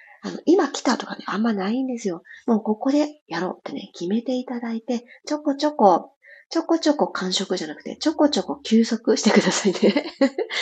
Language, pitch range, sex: Japanese, 205-295 Hz, female